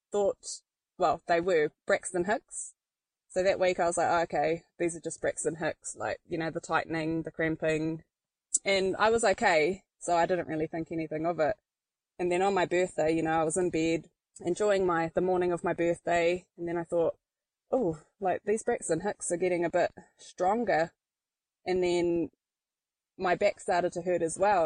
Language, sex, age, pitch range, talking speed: English, female, 20-39, 170-195 Hz, 190 wpm